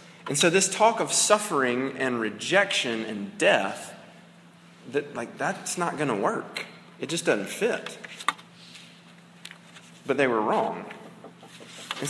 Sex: male